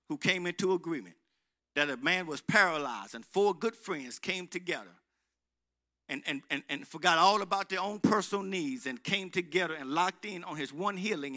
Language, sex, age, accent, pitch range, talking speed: English, male, 50-69, American, 165-220 Hz, 185 wpm